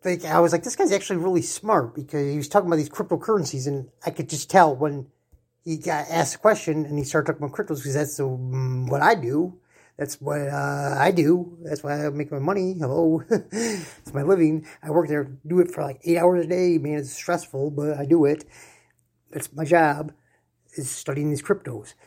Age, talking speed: 30-49, 210 wpm